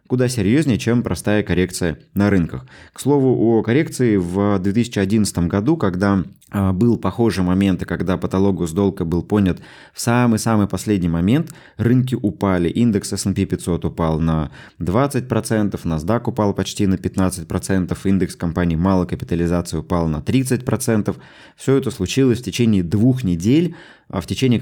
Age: 20-39